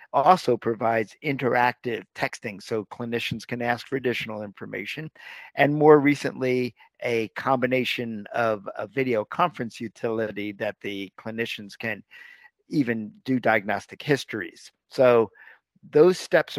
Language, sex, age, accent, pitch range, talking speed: English, male, 50-69, American, 115-135 Hz, 115 wpm